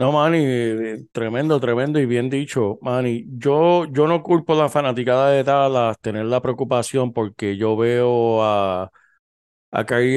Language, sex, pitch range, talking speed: Spanish, male, 110-140 Hz, 155 wpm